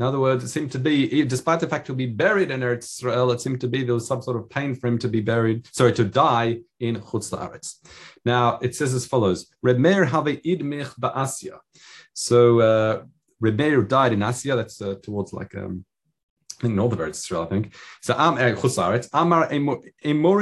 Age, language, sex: 30-49, English, male